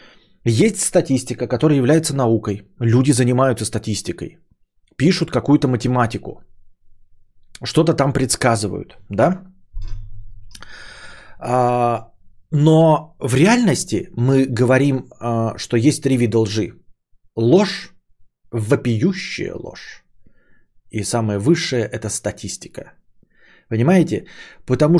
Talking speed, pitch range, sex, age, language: 85 wpm, 105-150 Hz, male, 30-49, Bulgarian